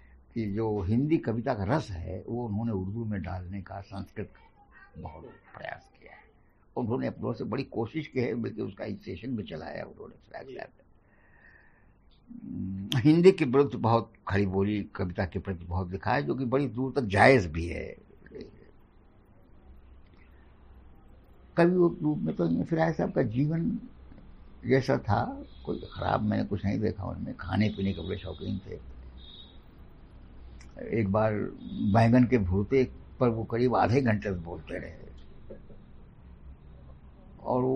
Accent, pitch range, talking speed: native, 95-125 Hz, 140 wpm